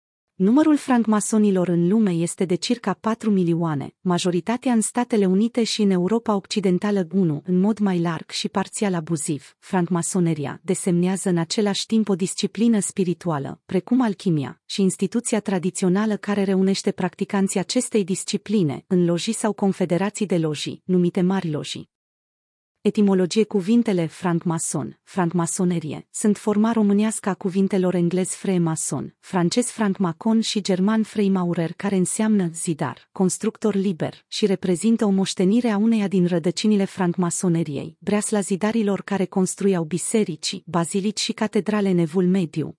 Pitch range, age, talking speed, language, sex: 175-210 Hz, 30-49, 130 wpm, Romanian, female